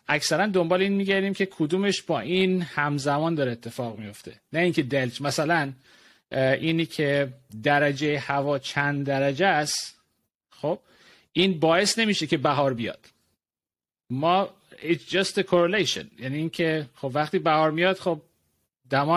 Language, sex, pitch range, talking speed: Persian, male, 135-170 Hz, 135 wpm